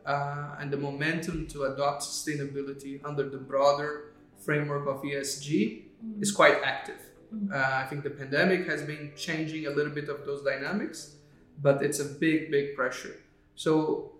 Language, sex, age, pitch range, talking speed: English, male, 30-49, 140-155 Hz, 155 wpm